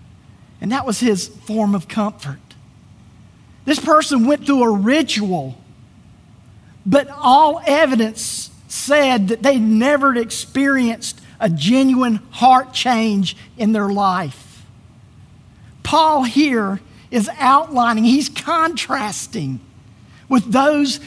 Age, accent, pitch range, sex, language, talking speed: 50-69, American, 175-275 Hz, male, English, 105 wpm